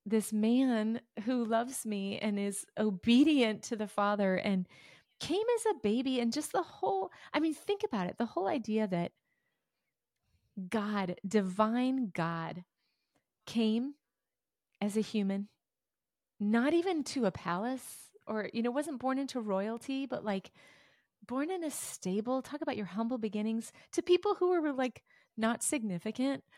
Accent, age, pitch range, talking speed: American, 30-49, 205-270 Hz, 150 wpm